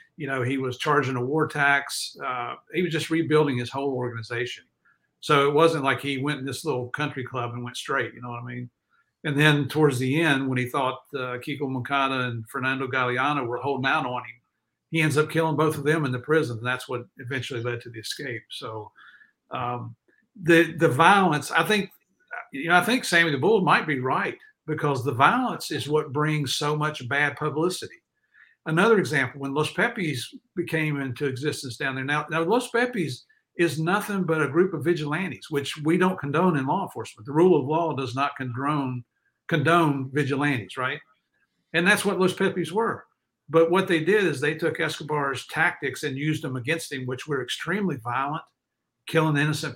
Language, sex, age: English, male, 50-69